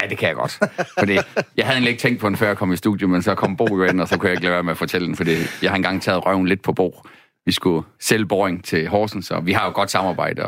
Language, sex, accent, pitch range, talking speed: Danish, male, native, 95-135 Hz, 300 wpm